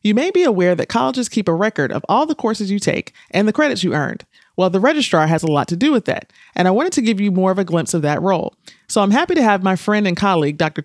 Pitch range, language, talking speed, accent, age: 165-230 Hz, English, 295 wpm, American, 30-49